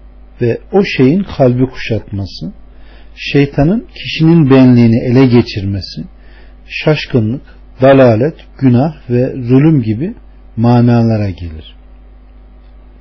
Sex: male